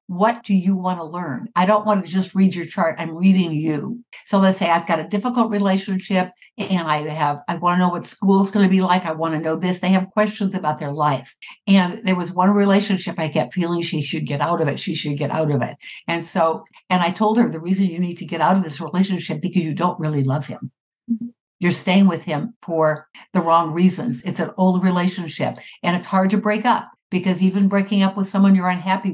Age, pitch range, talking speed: 60-79, 170-205 Hz, 245 wpm